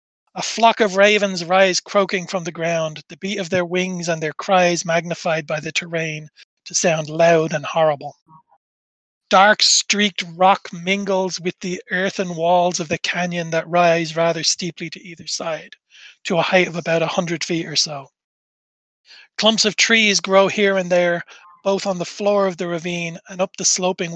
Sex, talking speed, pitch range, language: male, 180 wpm, 160-195 Hz, English